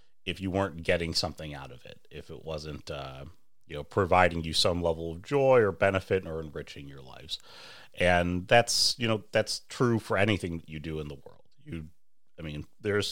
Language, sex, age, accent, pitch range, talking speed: English, male, 30-49, American, 80-100 Hz, 200 wpm